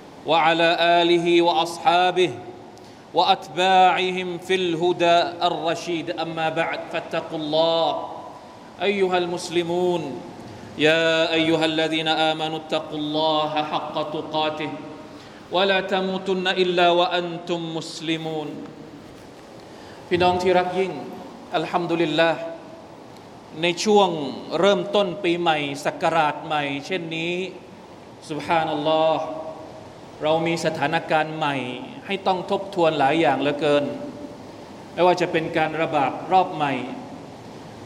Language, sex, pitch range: Thai, male, 155-180 Hz